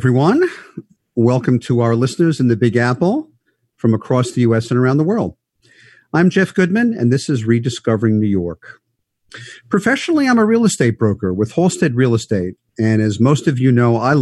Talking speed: 180 wpm